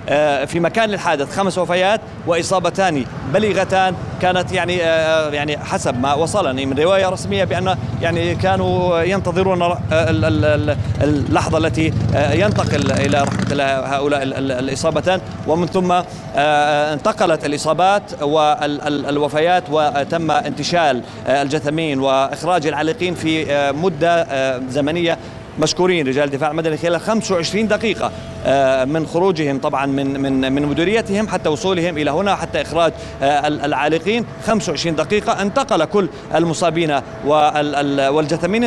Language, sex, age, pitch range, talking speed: Arabic, male, 30-49, 145-185 Hz, 100 wpm